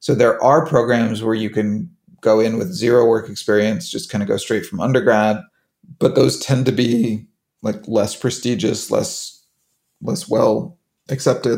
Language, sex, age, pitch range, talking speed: English, male, 30-49, 110-130 Hz, 165 wpm